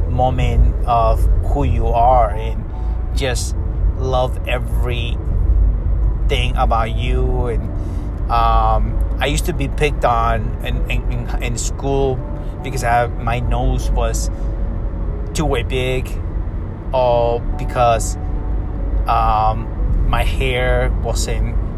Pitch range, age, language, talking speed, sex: 80-115 Hz, 30-49, English, 105 wpm, male